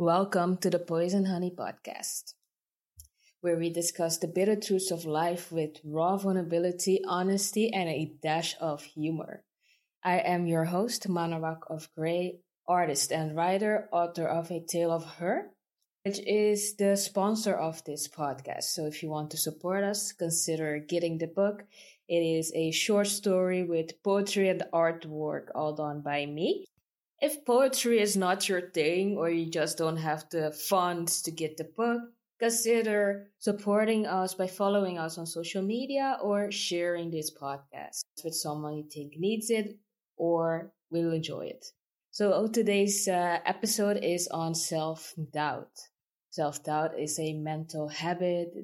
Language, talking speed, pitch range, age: English, 150 wpm, 155-195 Hz, 20-39